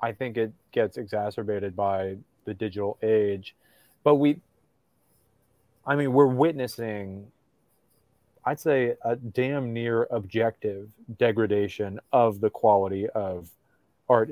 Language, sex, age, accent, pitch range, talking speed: English, male, 30-49, American, 105-125 Hz, 115 wpm